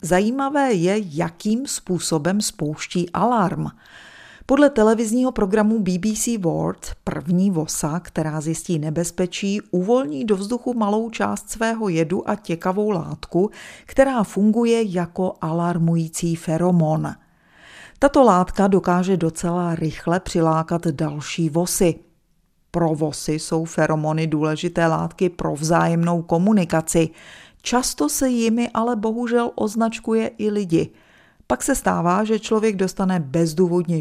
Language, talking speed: Czech, 110 wpm